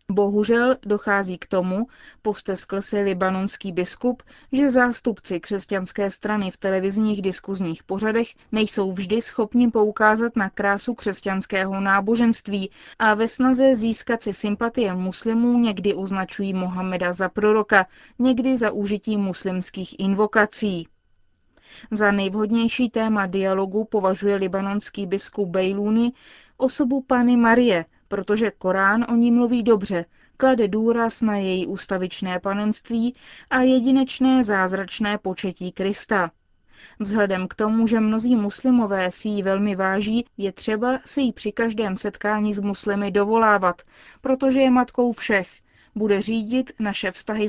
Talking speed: 125 wpm